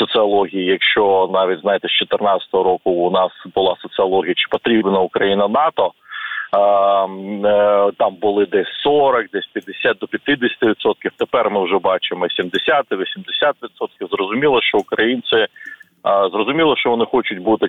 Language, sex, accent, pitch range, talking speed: Ukrainian, male, native, 100-140 Hz, 120 wpm